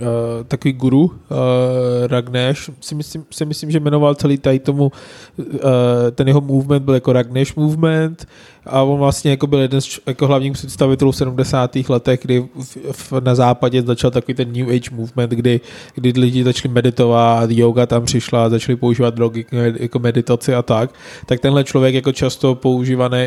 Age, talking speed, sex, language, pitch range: 20-39, 175 wpm, male, Czech, 125-145 Hz